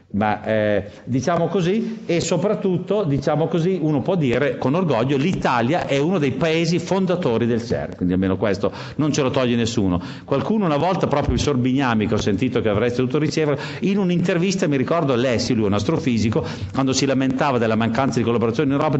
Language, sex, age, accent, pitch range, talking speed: Italian, male, 50-69, native, 120-170 Hz, 185 wpm